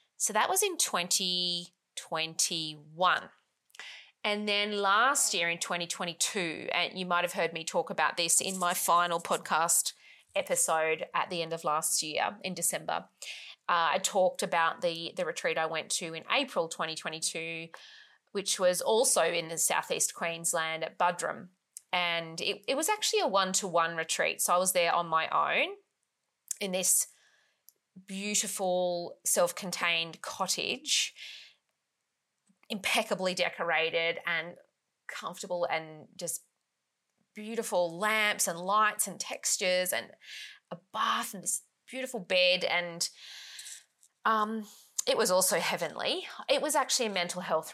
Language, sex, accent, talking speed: English, female, Australian, 135 wpm